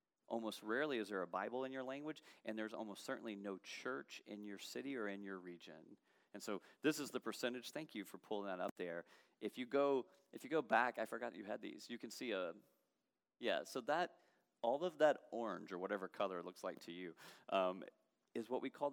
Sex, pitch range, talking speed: male, 95-120 Hz, 225 wpm